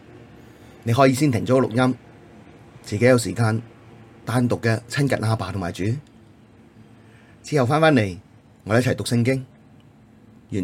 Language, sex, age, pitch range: Chinese, male, 30-49, 100-125 Hz